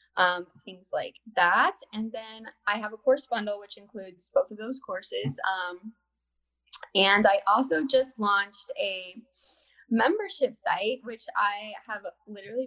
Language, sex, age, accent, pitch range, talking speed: English, female, 10-29, American, 195-255 Hz, 140 wpm